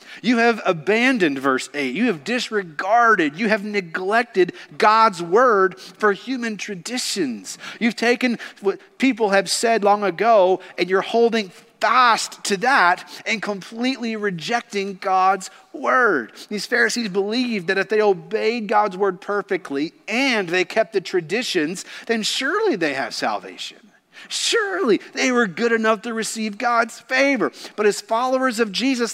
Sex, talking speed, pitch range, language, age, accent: male, 140 wpm, 190-240 Hz, English, 40-59, American